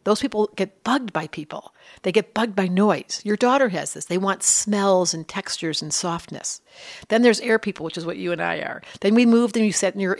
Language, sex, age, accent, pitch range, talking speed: English, female, 50-69, American, 180-235 Hz, 240 wpm